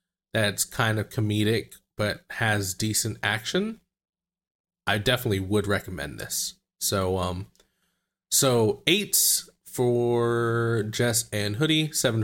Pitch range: 110-150 Hz